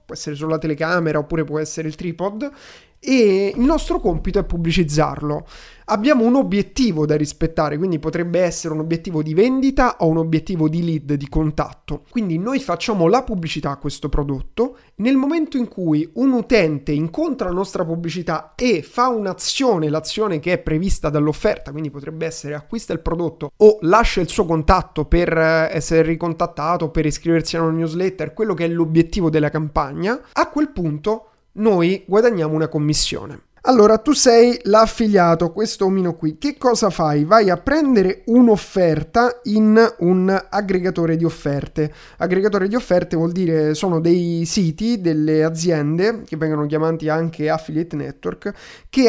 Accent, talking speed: native, 155 wpm